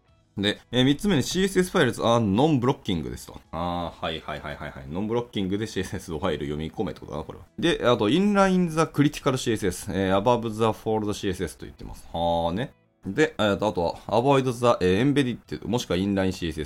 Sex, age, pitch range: male, 20-39, 85-125 Hz